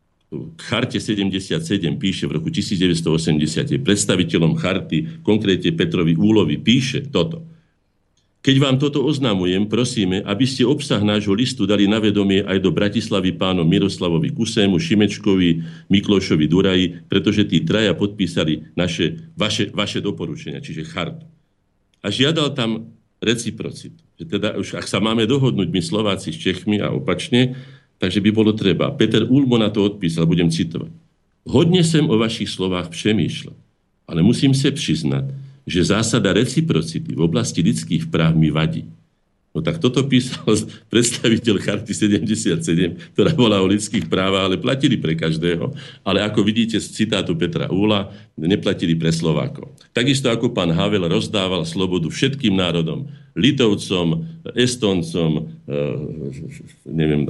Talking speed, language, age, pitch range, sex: 135 wpm, Slovak, 50-69, 85-115 Hz, male